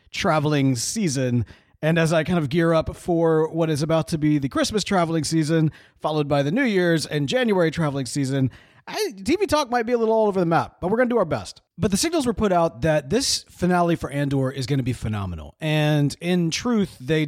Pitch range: 135-185 Hz